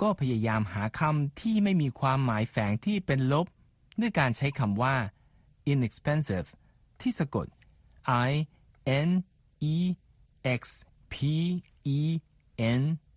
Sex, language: male, Thai